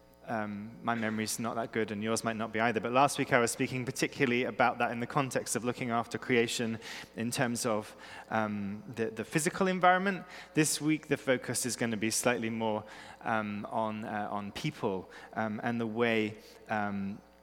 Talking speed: 195 wpm